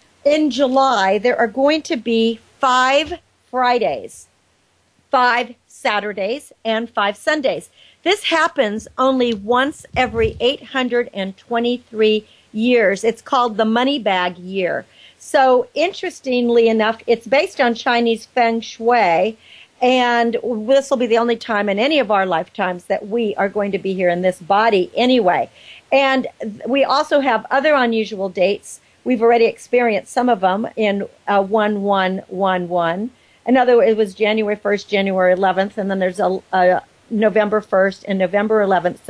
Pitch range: 205-260 Hz